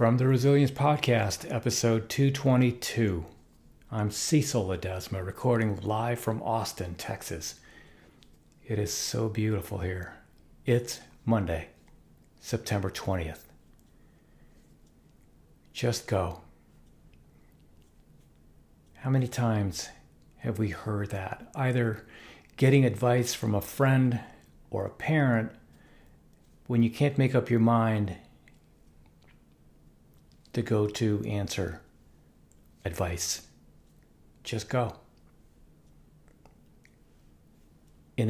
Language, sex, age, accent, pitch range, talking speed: English, male, 50-69, American, 80-115 Hz, 90 wpm